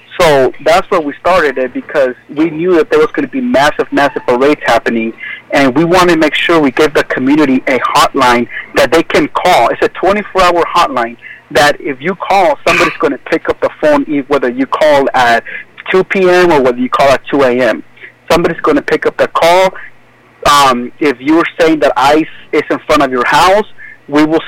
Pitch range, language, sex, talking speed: 135-190 Hz, English, male, 205 wpm